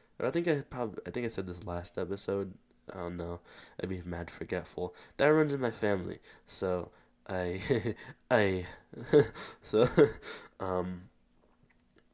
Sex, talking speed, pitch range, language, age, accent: male, 140 wpm, 85-95 Hz, English, 20-39, American